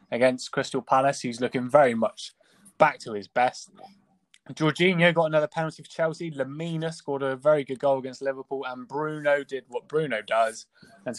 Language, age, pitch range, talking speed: English, 20-39, 125-160 Hz, 170 wpm